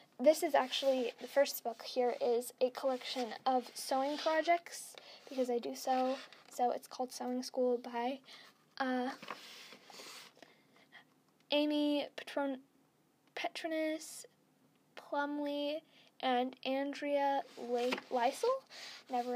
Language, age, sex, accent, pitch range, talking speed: English, 10-29, female, American, 255-315 Hz, 100 wpm